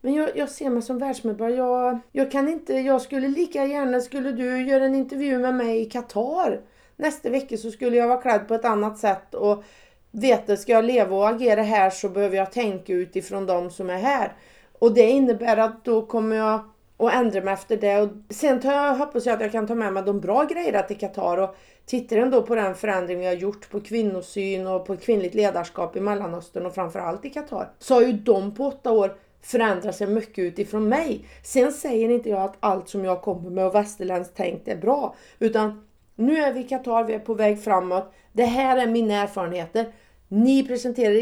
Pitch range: 200-255 Hz